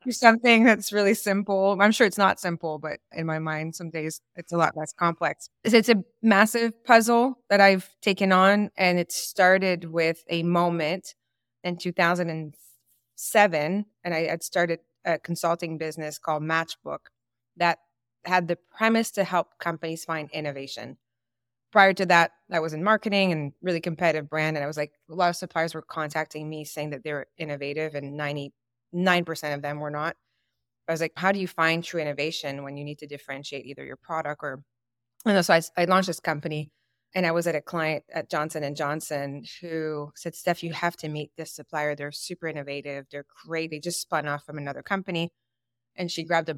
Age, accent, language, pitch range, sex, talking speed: 20-39, American, English, 145-180 Hz, female, 190 wpm